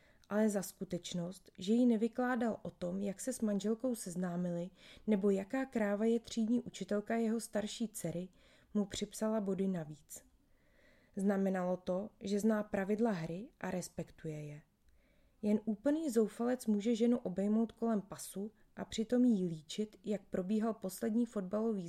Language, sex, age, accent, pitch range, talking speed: Czech, female, 20-39, native, 185-230 Hz, 140 wpm